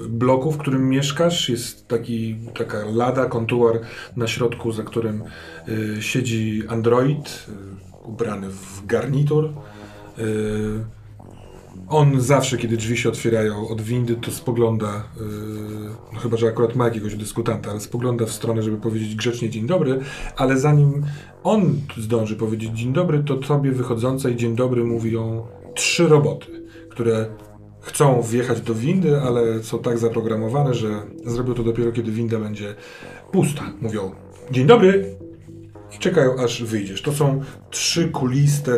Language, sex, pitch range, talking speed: Polish, male, 110-125 Hz, 130 wpm